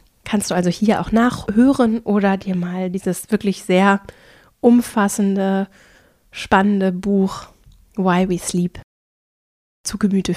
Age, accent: 20-39, German